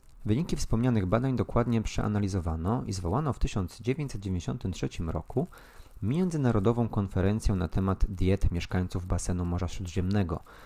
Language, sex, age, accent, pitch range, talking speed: Polish, male, 30-49, native, 90-110 Hz, 105 wpm